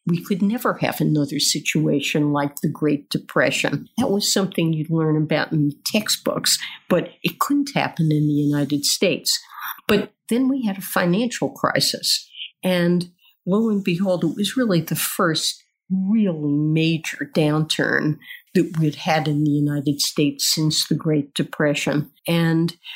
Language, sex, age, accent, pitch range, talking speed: English, female, 50-69, American, 150-175 Hz, 150 wpm